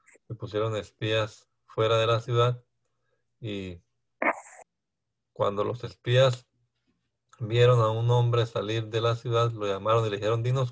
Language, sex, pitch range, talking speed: Spanish, male, 110-125 Hz, 135 wpm